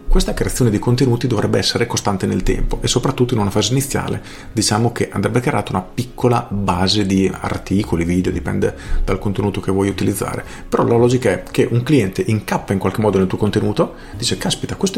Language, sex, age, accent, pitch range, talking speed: Italian, male, 40-59, native, 95-125 Hz, 190 wpm